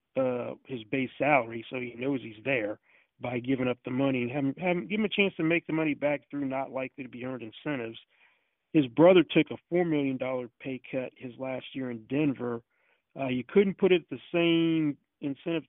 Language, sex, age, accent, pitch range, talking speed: English, male, 40-59, American, 130-155 Hz, 205 wpm